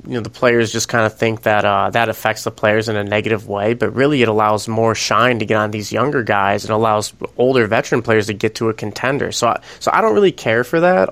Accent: American